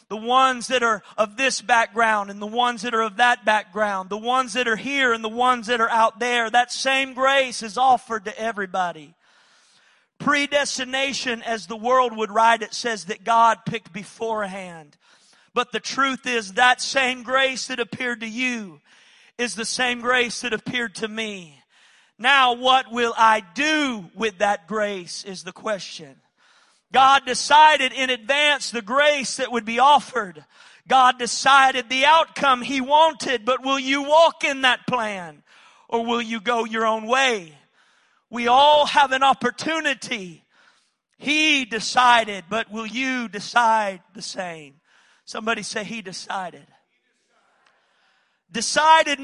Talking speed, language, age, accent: 150 wpm, English, 40-59, American